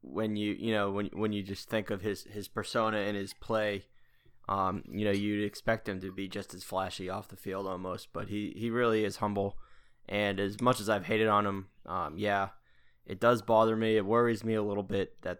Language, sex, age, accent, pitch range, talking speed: English, male, 10-29, American, 100-120 Hz, 225 wpm